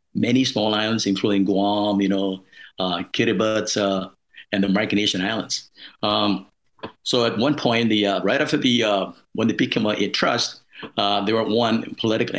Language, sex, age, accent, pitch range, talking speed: English, male, 50-69, American, 100-110 Hz, 175 wpm